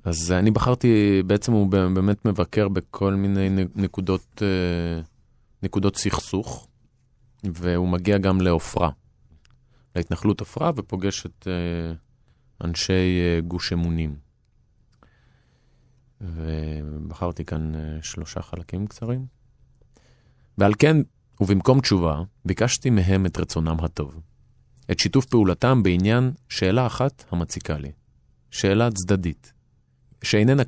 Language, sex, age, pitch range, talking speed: Hebrew, male, 30-49, 85-115 Hz, 95 wpm